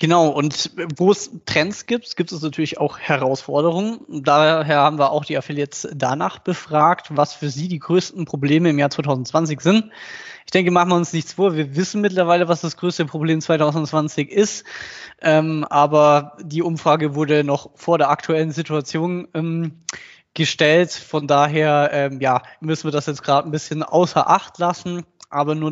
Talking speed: 165 wpm